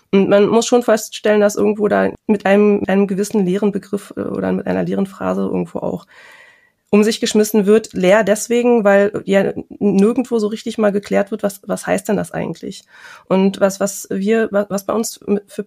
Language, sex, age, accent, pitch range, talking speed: German, female, 20-39, German, 190-225 Hz, 190 wpm